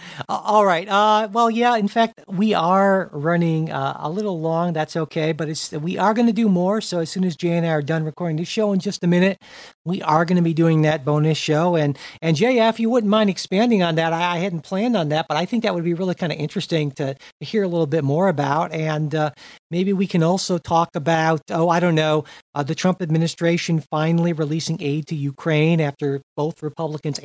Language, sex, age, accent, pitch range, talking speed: English, male, 50-69, American, 150-185 Hz, 230 wpm